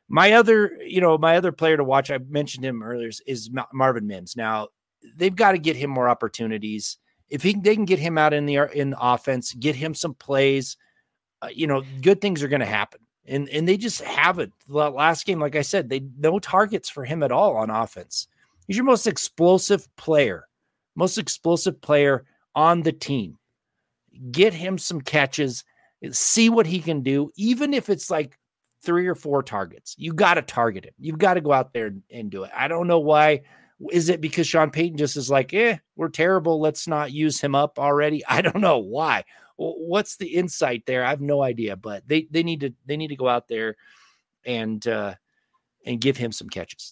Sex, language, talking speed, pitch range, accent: male, English, 205 wpm, 130-170 Hz, American